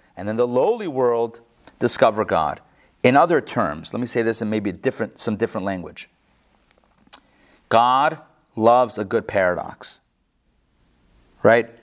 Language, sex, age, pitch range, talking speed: English, male, 30-49, 115-165 Hz, 130 wpm